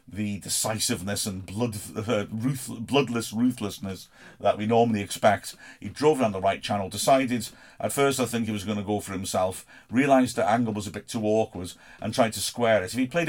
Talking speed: 210 wpm